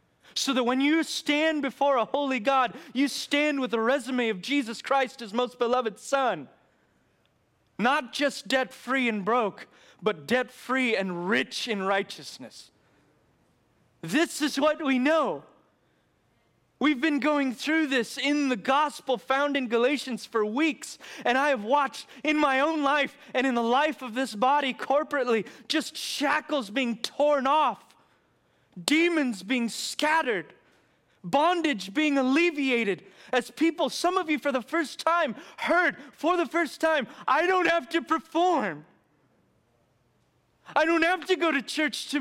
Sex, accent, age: male, American, 30-49